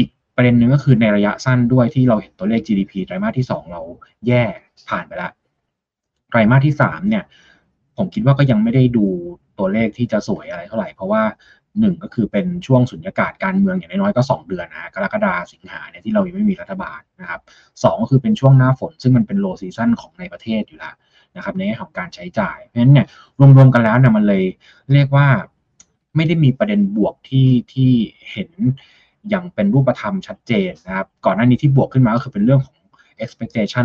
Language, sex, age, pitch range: Thai, male, 20-39, 120-195 Hz